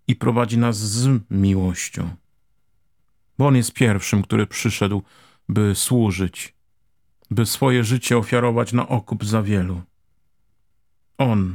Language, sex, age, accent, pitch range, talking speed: Polish, male, 50-69, native, 95-120 Hz, 115 wpm